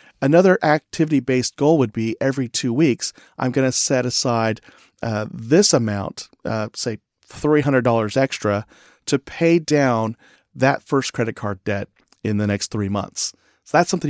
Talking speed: 155 wpm